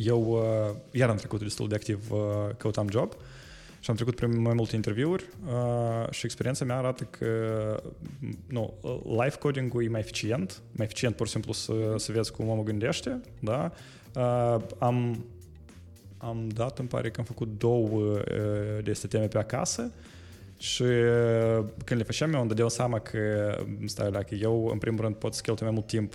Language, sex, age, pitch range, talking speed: English, male, 20-39, 105-120 Hz, 185 wpm